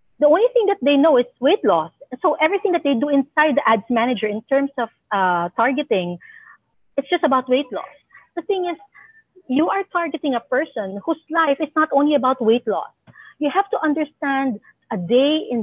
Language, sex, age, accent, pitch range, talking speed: English, female, 40-59, Filipino, 195-285 Hz, 195 wpm